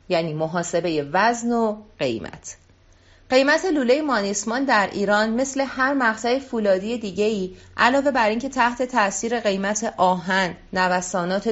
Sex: female